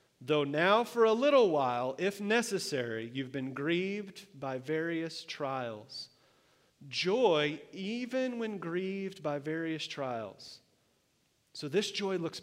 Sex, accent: male, American